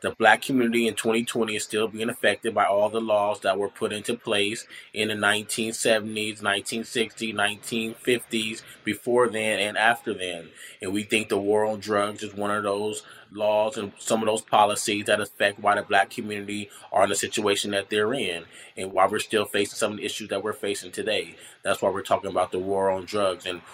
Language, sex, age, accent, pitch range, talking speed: English, male, 20-39, American, 100-110 Hz, 205 wpm